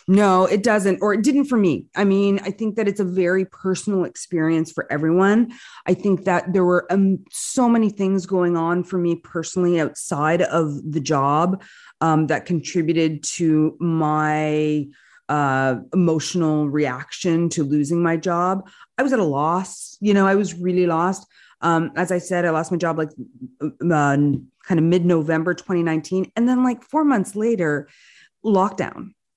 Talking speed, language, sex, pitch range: 170 wpm, English, female, 165-195 Hz